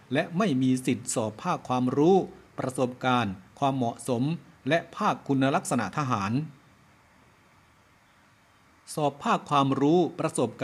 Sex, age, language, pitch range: male, 60-79, Thai, 120-155 Hz